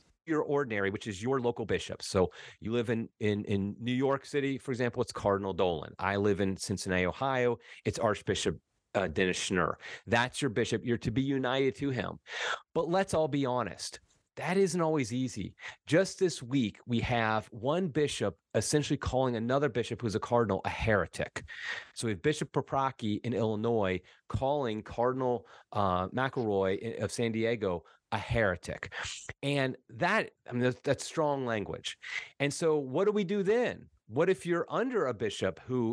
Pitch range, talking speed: 115-145 Hz, 170 wpm